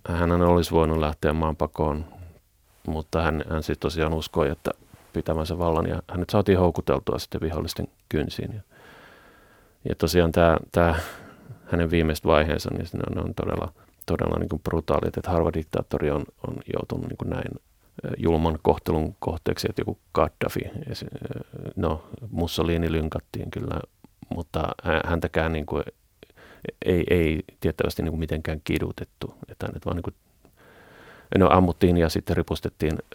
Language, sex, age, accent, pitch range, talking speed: Finnish, male, 30-49, native, 80-90 Hz, 130 wpm